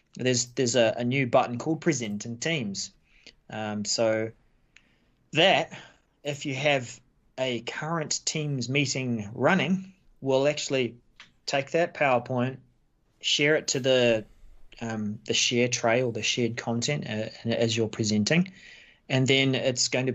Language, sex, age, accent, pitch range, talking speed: English, male, 30-49, Australian, 115-145 Hz, 140 wpm